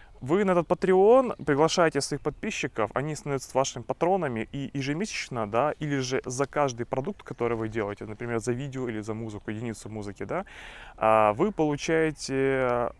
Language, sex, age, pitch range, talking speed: Russian, male, 20-39, 115-150 Hz, 150 wpm